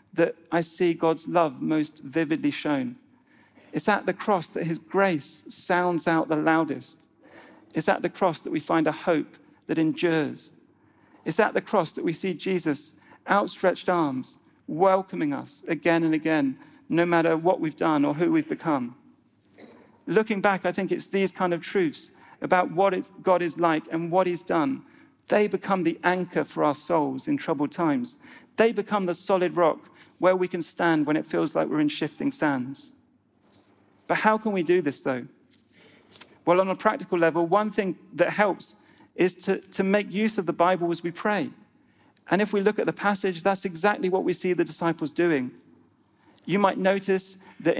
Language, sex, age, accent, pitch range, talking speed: English, male, 40-59, British, 165-205 Hz, 180 wpm